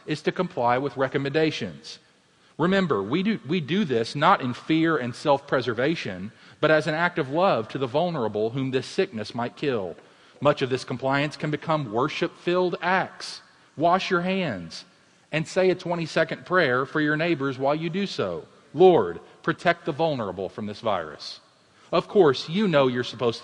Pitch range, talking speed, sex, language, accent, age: 120-170 Hz, 170 wpm, male, English, American, 40-59